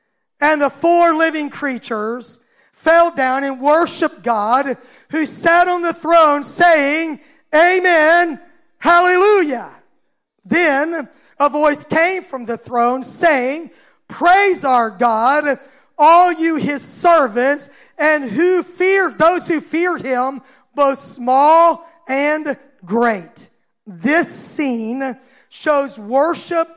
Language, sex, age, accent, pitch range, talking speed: English, male, 40-59, American, 275-340 Hz, 110 wpm